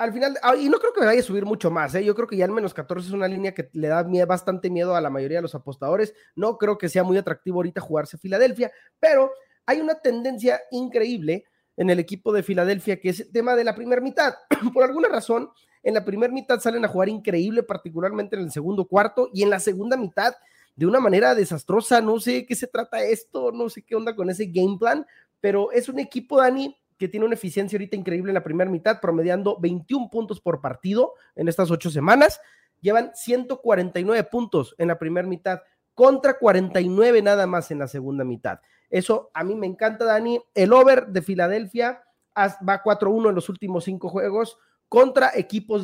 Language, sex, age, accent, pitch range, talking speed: Spanish, male, 30-49, Mexican, 180-240 Hz, 210 wpm